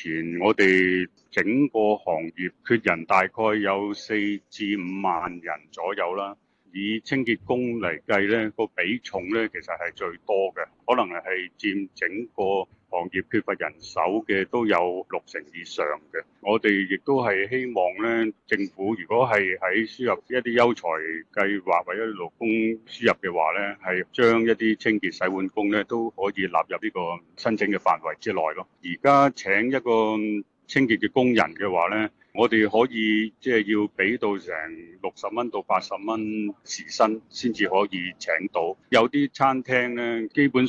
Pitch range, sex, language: 95-120 Hz, male, Chinese